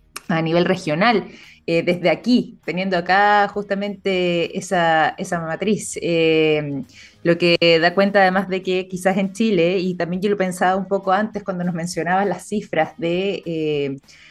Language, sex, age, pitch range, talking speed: Spanish, female, 20-39, 170-205 Hz, 160 wpm